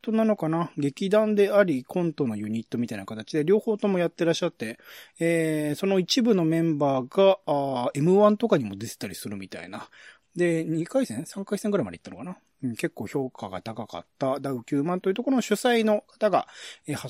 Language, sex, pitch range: Japanese, male, 125-180 Hz